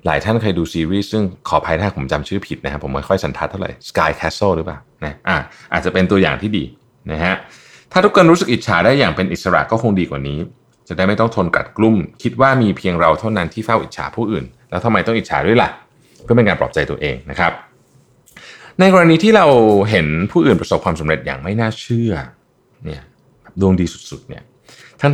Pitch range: 90-125 Hz